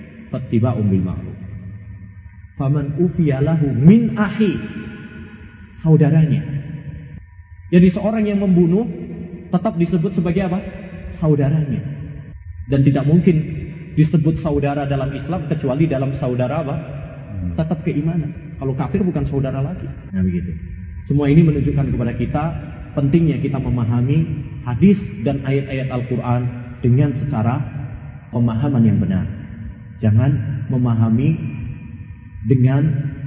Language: Indonesian